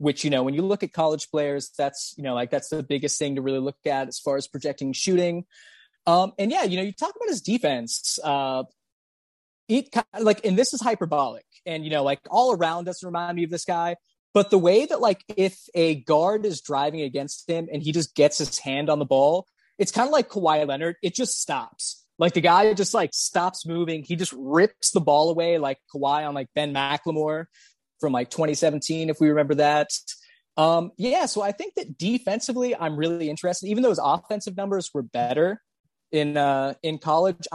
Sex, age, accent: male, 20-39, American